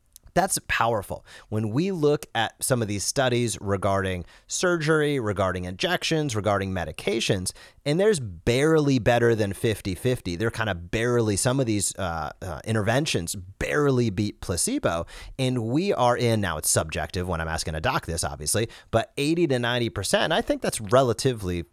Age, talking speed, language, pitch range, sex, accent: 30-49, 155 wpm, English, 105-145 Hz, male, American